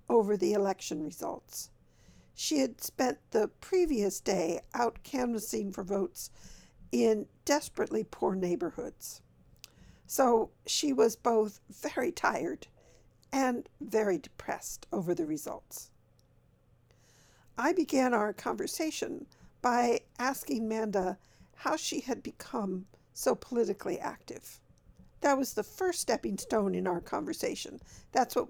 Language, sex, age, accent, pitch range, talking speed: English, female, 50-69, American, 185-270 Hz, 115 wpm